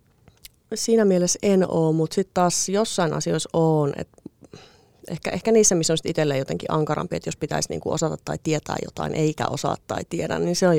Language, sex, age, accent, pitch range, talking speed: Finnish, female, 30-49, native, 145-180 Hz, 190 wpm